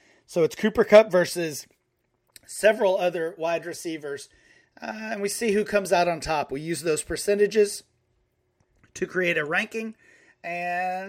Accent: American